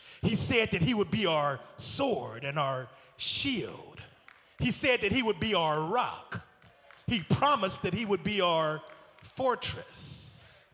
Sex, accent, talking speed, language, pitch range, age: male, American, 150 wpm, English, 200-300 Hz, 40-59